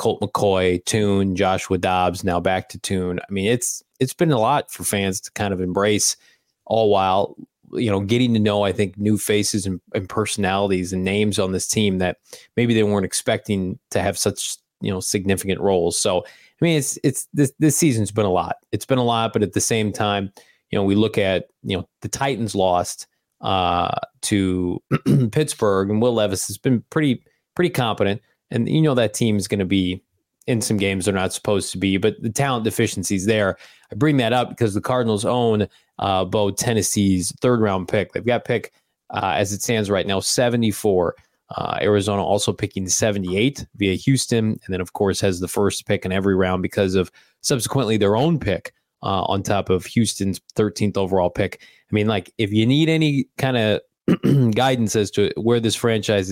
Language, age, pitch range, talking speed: English, 20-39, 95-115 Hz, 200 wpm